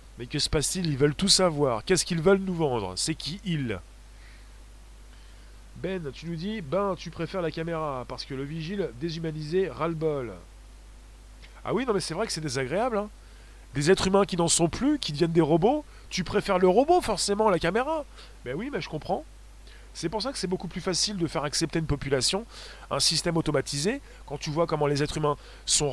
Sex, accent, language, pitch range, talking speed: male, French, French, 135-185 Hz, 210 wpm